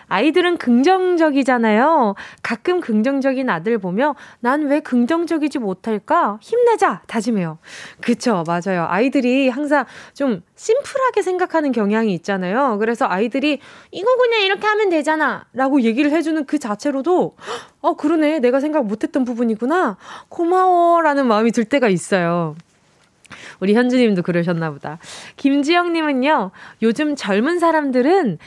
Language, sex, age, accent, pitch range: Korean, female, 20-39, native, 215-300 Hz